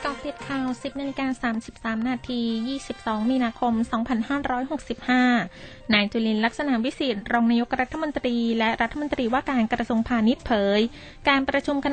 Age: 20-39